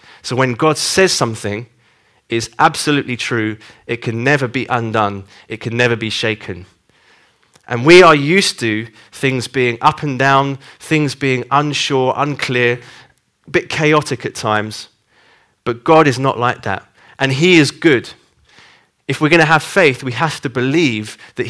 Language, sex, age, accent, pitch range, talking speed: English, male, 30-49, British, 115-145 Hz, 160 wpm